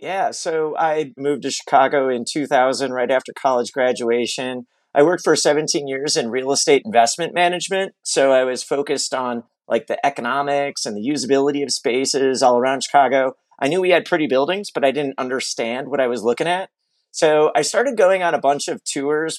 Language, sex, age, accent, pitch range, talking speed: English, male, 30-49, American, 130-155 Hz, 190 wpm